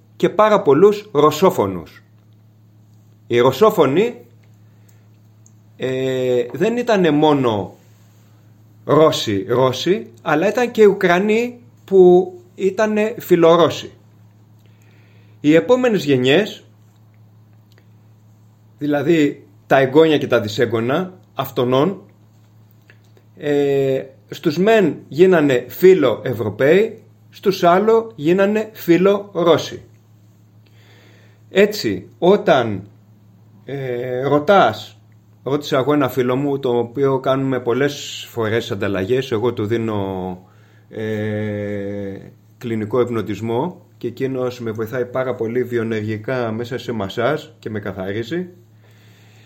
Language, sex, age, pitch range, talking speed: Greek, male, 30-49, 110-165 Hz, 85 wpm